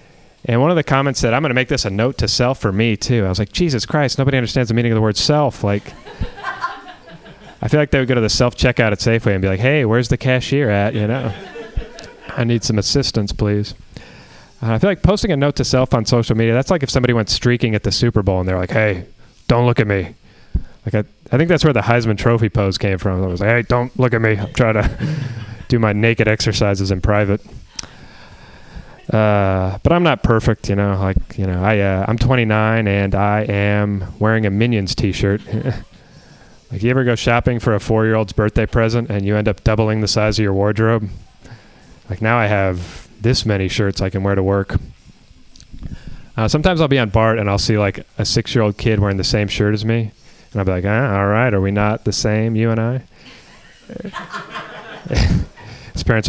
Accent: American